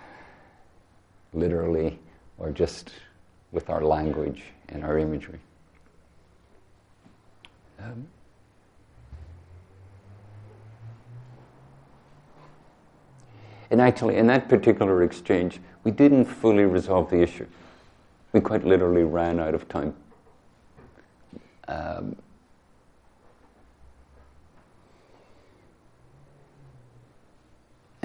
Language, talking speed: English, 65 wpm